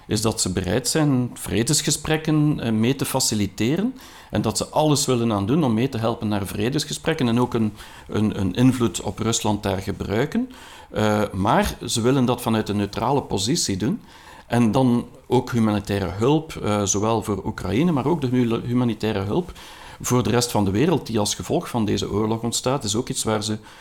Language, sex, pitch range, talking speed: Dutch, male, 105-130 Hz, 185 wpm